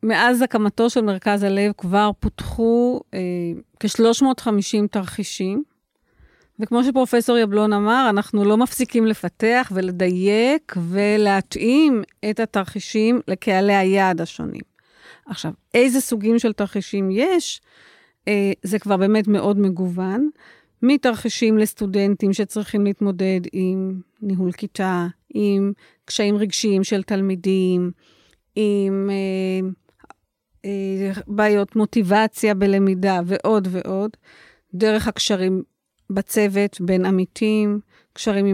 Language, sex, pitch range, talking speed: Hebrew, female, 195-225 Hz, 95 wpm